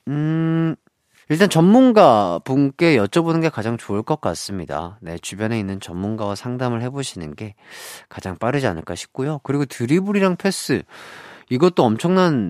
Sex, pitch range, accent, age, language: male, 100-150 Hz, native, 40-59, Korean